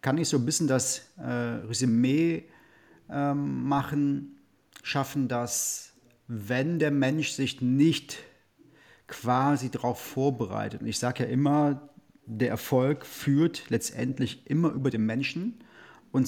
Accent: German